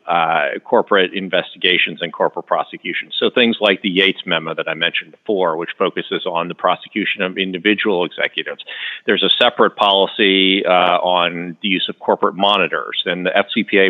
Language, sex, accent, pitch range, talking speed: English, male, American, 95-115 Hz, 165 wpm